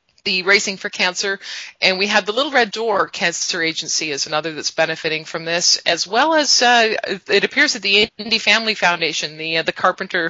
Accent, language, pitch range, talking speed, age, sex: American, English, 170-215 Hz, 200 wpm, 30-49, female